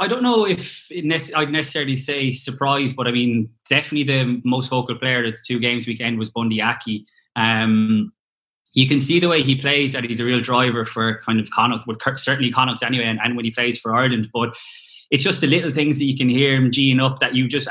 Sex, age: male, 20-39